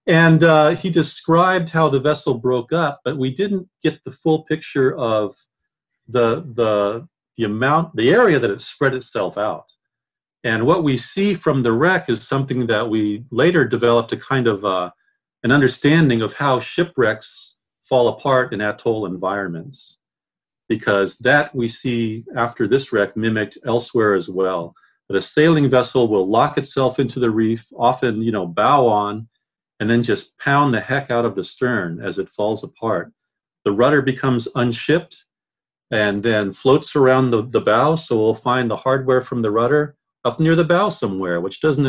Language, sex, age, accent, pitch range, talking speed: English, male, 40-59, American, 110-145 Hz, 175 wpm